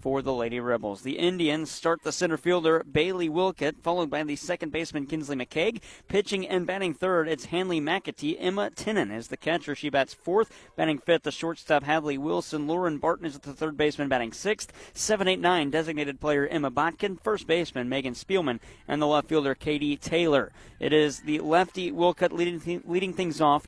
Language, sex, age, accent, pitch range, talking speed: English, male, 40-59, American, 135-170 Hz, 195 wpm